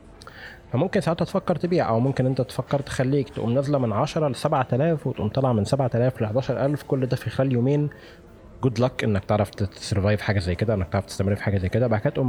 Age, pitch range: 20-39, 110-140 Hz